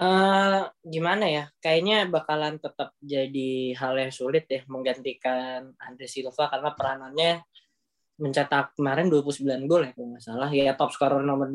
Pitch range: 135-165 Hz